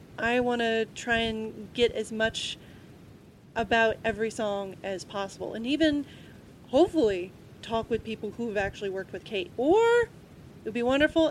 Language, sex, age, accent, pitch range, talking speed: English, female, 30-49, American, 205-270 Hz, 160 wpm